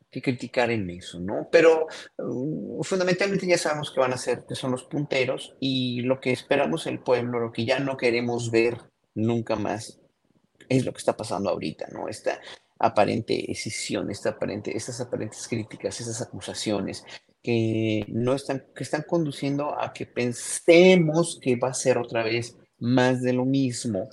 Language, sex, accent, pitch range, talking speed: Spanish, male, Mexican, 110-140 Hz, 170 wpm